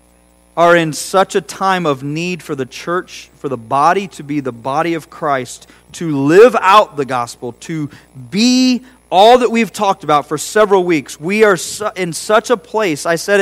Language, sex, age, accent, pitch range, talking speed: English, male, 40-59, American, 135-220 Hz, 190 wpm